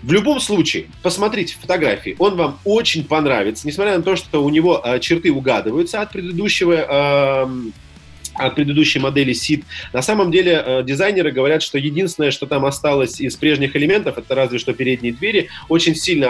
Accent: native